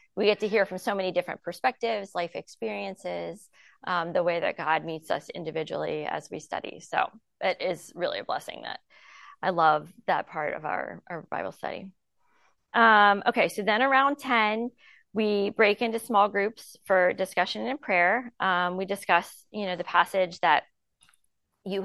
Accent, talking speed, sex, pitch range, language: American, 170 wpm, female, 180-230 Hz, English